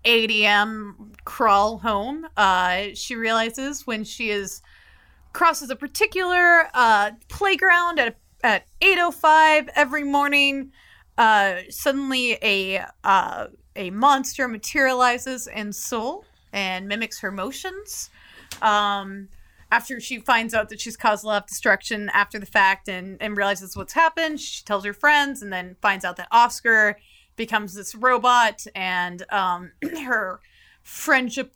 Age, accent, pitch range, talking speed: 30-49, American, 205-270 Hz, 130 wpm